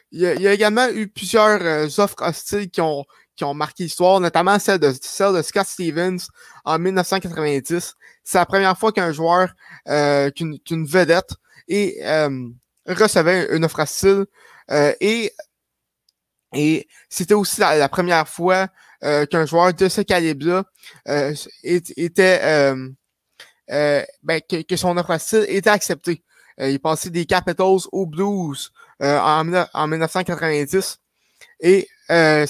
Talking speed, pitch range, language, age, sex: 145 wpm, 155-195 Hz, French, 20-39, male